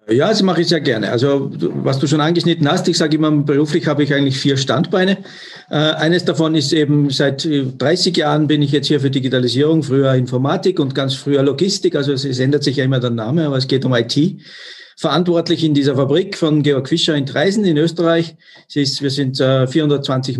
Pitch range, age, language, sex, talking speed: 130-155 Hz, 50-69, German, male, 195 wpm